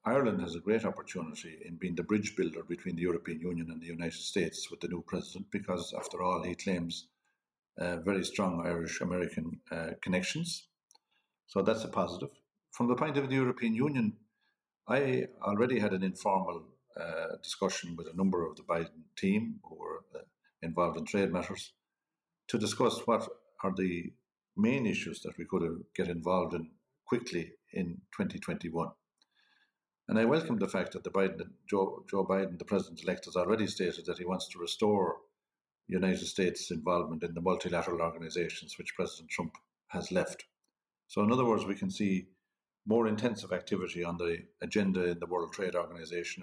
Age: 50-69